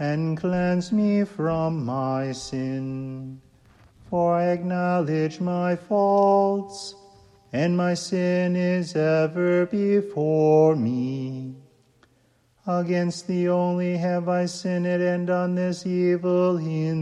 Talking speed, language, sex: 100 wpm, English, male